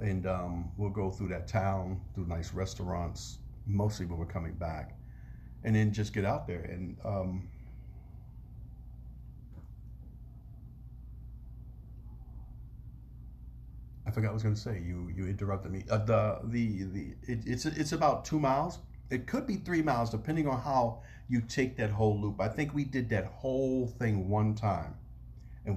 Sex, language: male, English